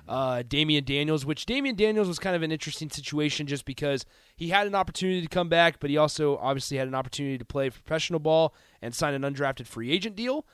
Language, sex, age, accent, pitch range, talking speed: English, male, 30-49, American, 130-170 Hz, 220 wpm